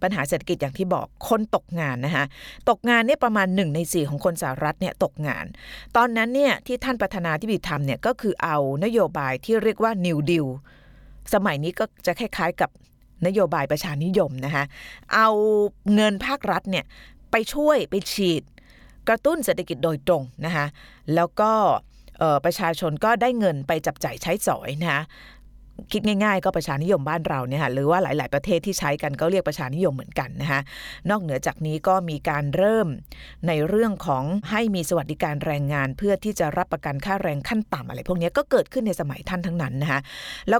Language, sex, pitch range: Thai, female, 150-210 Hz